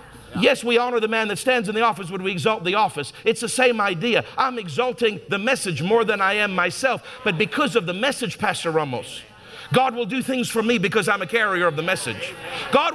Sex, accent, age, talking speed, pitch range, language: male, American, 50-69, 225 wpm, 185-245 Hz, English